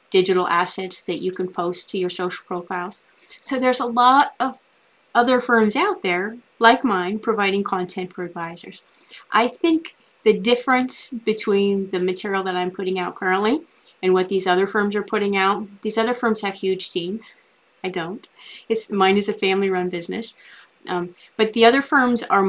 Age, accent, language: 30-49, American, English